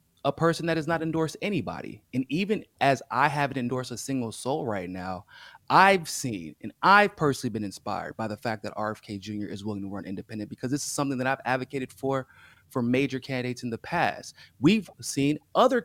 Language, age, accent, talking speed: English, 30-49, American, 200 wpm